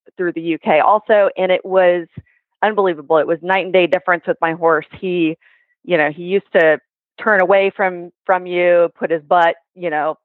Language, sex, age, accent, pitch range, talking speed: English, female, 30-49, American, 170-205 Hz, 195 wpm